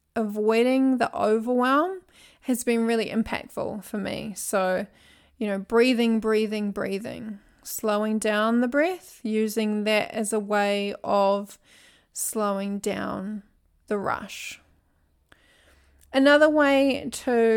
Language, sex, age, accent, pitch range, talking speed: English, female, 20-39, Australian, 210-250 Hz, 110 wpm